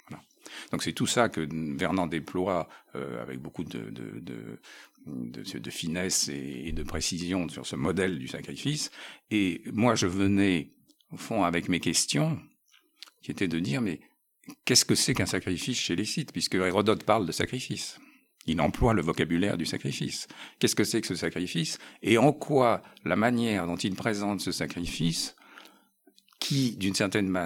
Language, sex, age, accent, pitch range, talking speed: French, male, 60-79, French, 85-115 Hz, 170 wpm